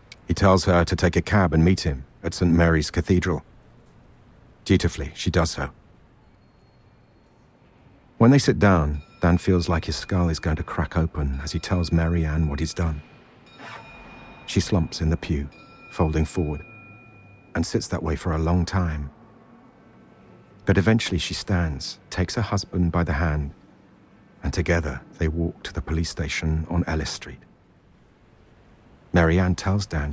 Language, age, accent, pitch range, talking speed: English, 40-59, British, 80-95 Hz, 155 wpm